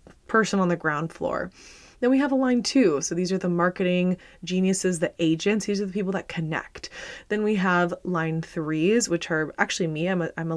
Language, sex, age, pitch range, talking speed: English, female, 20-39, 160-195 Hz, 215 wpm